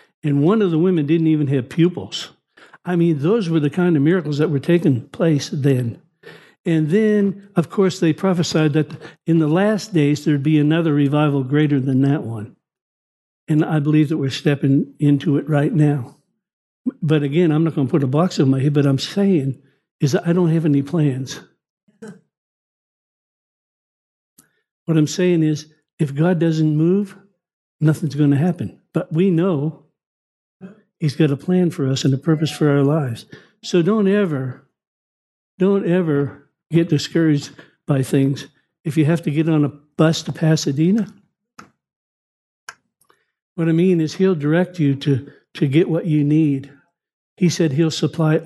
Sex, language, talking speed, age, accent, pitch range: male, English, 165 wpm, 60-79, American, 145-175 Hz